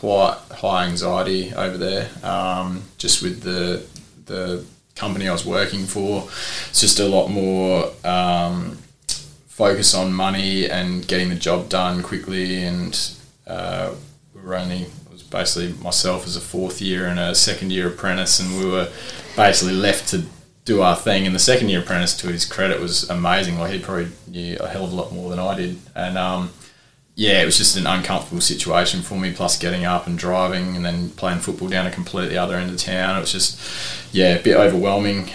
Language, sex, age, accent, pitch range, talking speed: English, male, 20-39, Australian, 90-95 Hz, 195 wpm